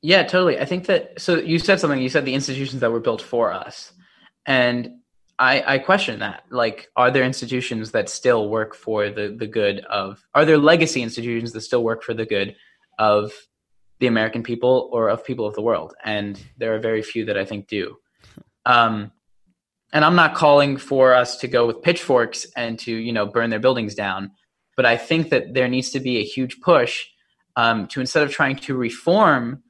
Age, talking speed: 10-29, 205 wpm